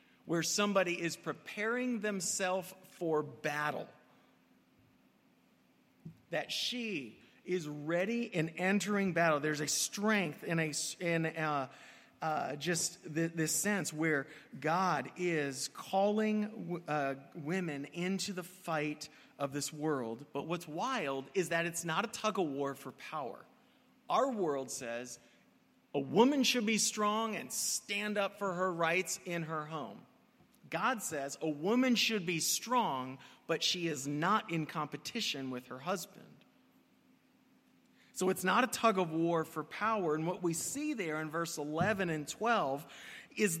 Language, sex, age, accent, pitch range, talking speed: English, male, 40-59, American, 155-210 Hz, 145 wpm